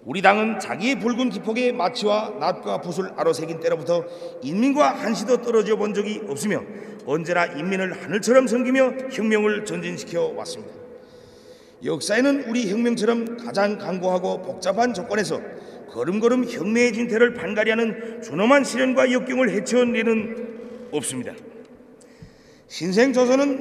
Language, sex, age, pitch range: Korean, male, 40-59, 200-245 Hz